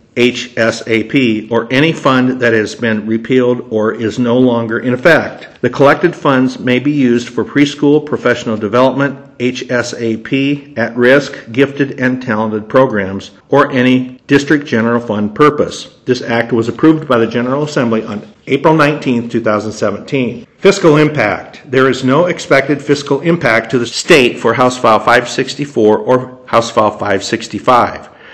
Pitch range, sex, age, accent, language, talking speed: 115-135 Hz, male, 50-69, American, English, 140 wpm